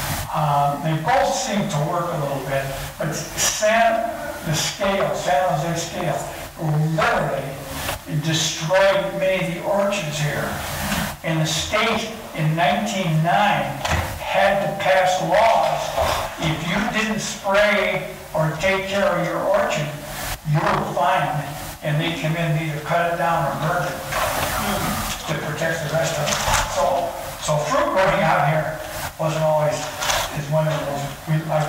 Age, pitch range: 60-79, 155-190 Hz